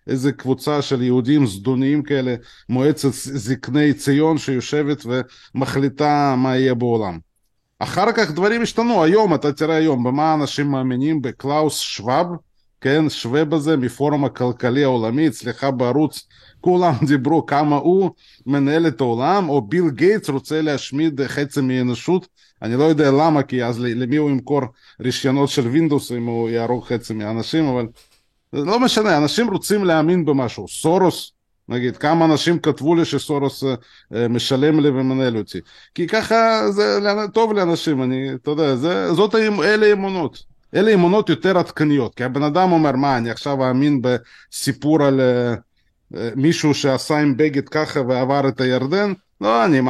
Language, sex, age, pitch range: Hebrew, male, 20-39, 125-160 Hz